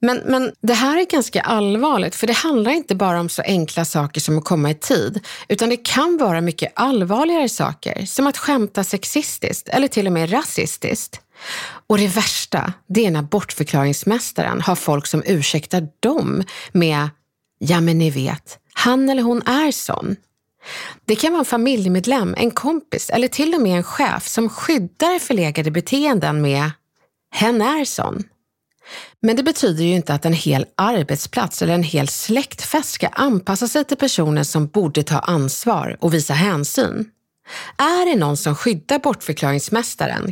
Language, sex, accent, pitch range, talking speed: Swedish, female, native, 160-250 Hz, 160 wpm